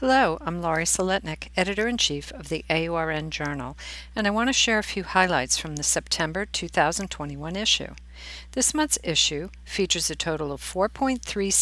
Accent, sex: American, female